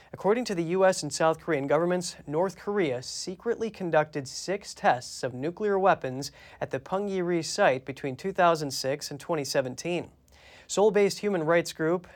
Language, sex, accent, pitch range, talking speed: English, male, American, 140-195 Hz, 145 wpm